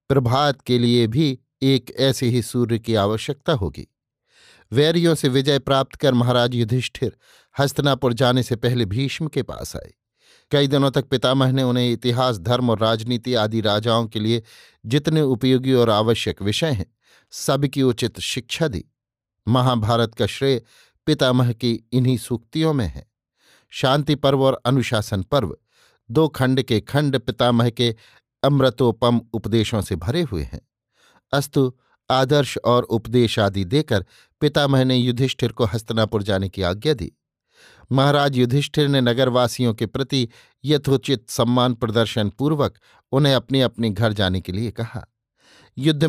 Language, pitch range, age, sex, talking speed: Hindi, 115-135 Hz, 50-69, male, 145 wpm